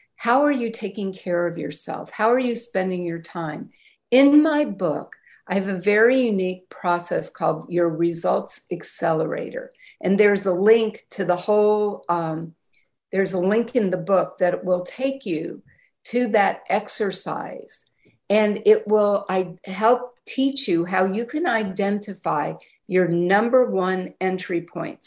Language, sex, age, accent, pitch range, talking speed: English, female, 50-69, American, 180-235 Hz, 150 wpm